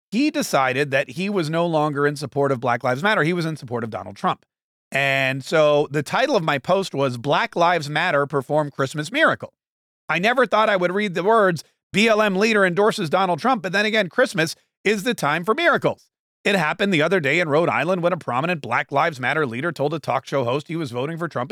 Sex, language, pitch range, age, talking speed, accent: male, English, 135-175 Hz, 40-59, 225 wpm, American